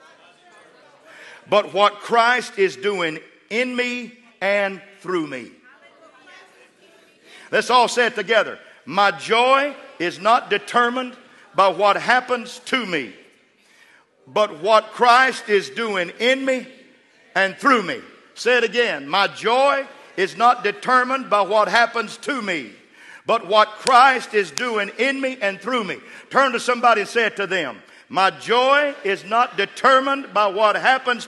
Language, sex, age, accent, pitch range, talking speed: English, male, 50-69, American, 210-255 Hz, 140 wpm